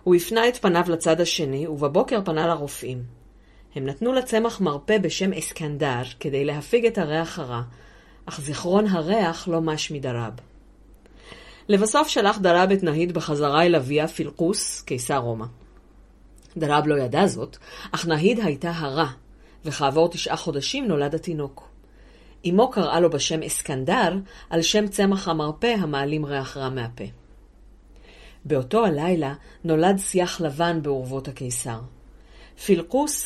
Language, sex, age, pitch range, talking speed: Hebrew, female, 40-59, 145-195 Hz, 130 wpm